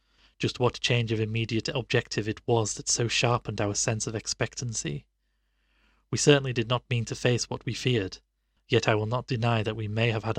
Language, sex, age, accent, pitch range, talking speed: English, male, 30-49, British, 105-120 Hz, 200 wpm